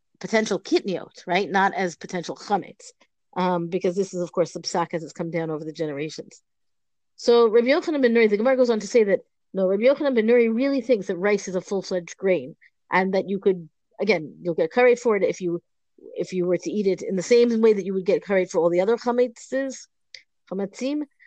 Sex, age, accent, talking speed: female, 40-59, American, 220 wpm